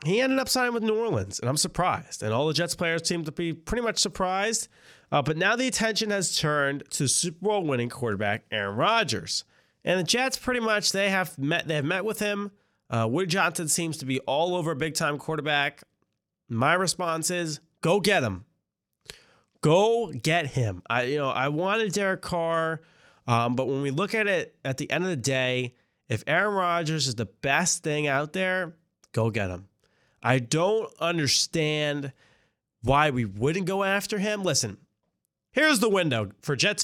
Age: 30-49